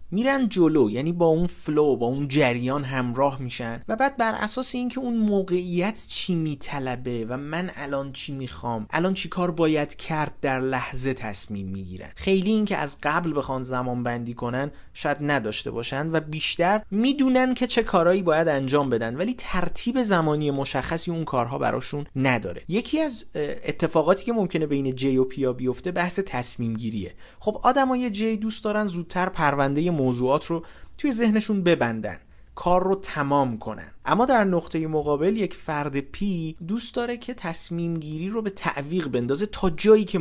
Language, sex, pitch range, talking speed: Persian, male, 130-185 Hz, 160 wpm